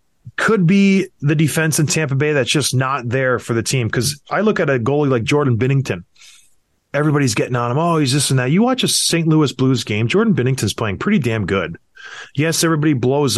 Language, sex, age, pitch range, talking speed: English, male, 20-39, 120-160 Hz, 215 wpm